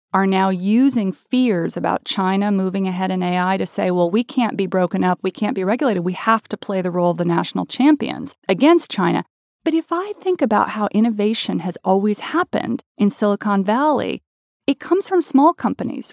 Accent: American